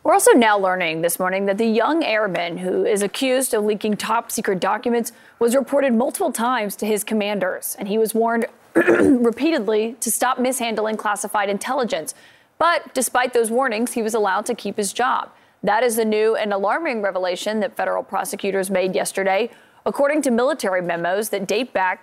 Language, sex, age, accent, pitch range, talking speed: English, female, 30-49, American, 195-245 Hz, 175 wpm